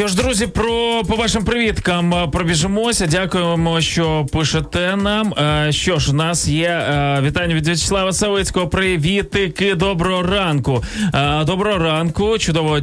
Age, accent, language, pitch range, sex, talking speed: 20-39, native, Ukrainian, 130-175 Hz, male, 120 wpm